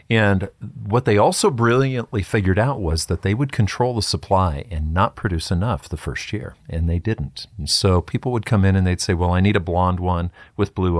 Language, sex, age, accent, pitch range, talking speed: English, male, 50-69, American, 85-120 Hz, 220 wpm